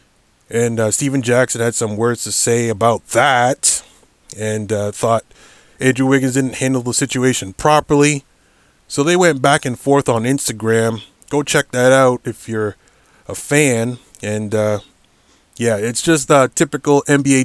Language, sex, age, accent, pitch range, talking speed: English, male, 20-39, American, 110-140 Hz, 155 wpm